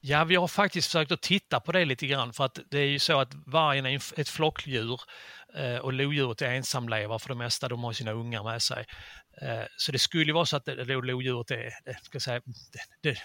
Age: 30-49